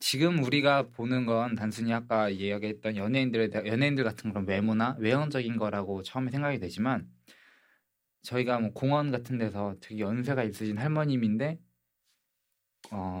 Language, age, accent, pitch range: Korean, 20-39, native, 110-150 Hz